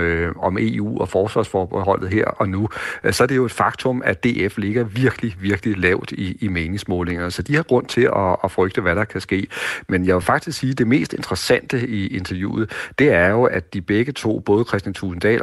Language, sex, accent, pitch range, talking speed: Danish, male, native, 95-115 Hz, 215 wpm